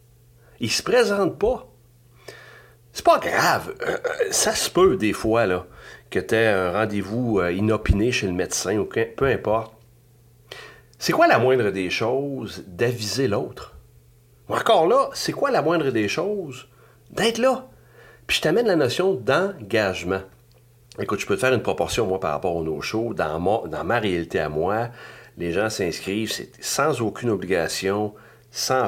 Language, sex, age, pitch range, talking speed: French, male, 40-59, 100-130 Hz, 160 wpm